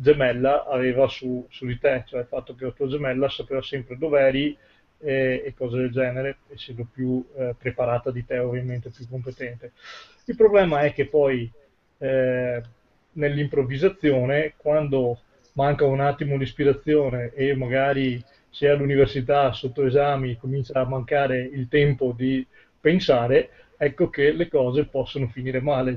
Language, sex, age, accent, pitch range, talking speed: Italian, male, 30-49, native, 130-145 Hz, 145 wpm